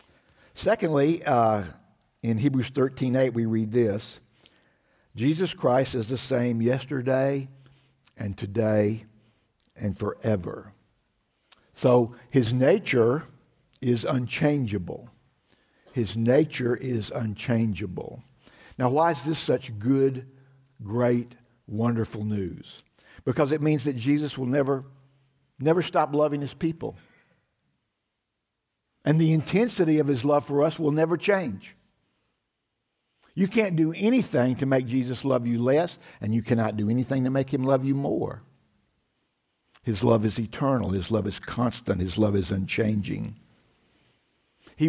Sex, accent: male, American